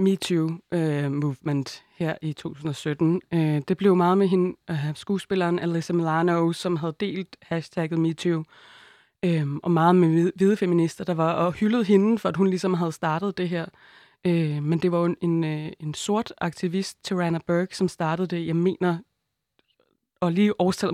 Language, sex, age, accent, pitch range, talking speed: Danish, female, 20-39, native, 165-190 Hz, 175 wpm